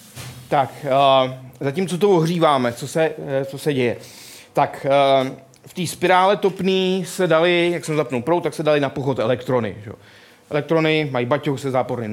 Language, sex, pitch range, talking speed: Czech, male, 130-170 Hz, 175 wpm